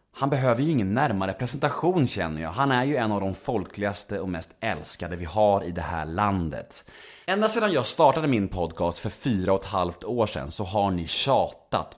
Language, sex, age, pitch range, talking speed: Swedish, male, 30-49, 100-150 Hz, 205 wpm